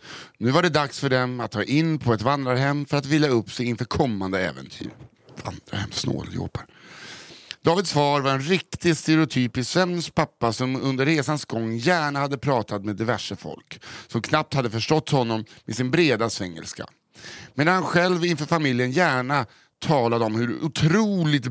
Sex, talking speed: male, 165 wpm